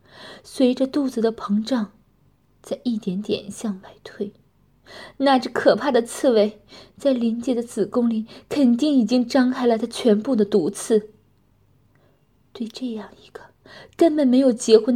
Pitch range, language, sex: 185-240 Hz, Chinese, female